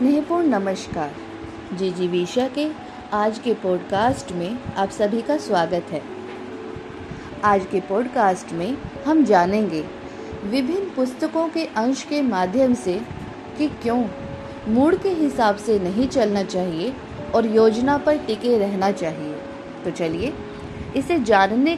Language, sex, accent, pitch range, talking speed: Hindi, female, native, 200-285 Hz, 125 wpm